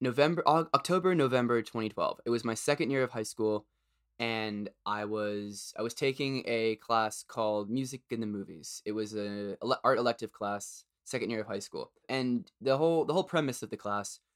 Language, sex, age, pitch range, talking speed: English, male, 20-39, 105-120 Hz, 190 wpm